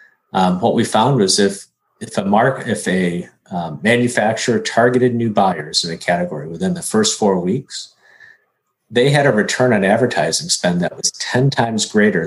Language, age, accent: English, 50-69, American